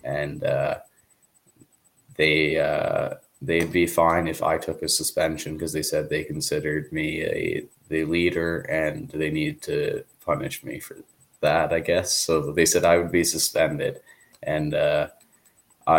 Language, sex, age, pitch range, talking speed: English, male, 20-39, 80-90 Hz, 145 wpm